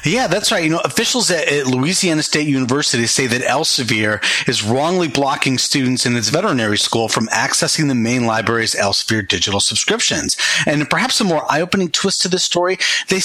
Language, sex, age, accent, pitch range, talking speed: English, male, 40-59, American, 115-165 Hz, 185 wpm